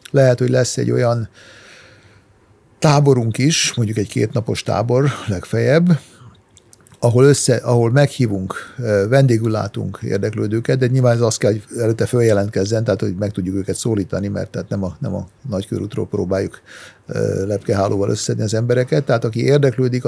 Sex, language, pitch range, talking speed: male, Hungarian, 100-125 Hz, 145 wpm